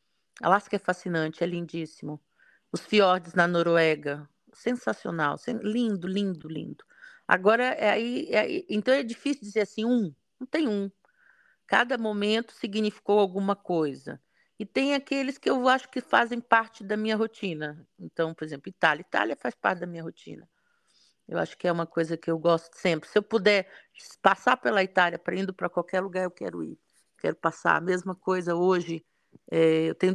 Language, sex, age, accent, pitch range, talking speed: Portuguese, female, 50-69, Brazilian, 165-225 Hz, 175 wpm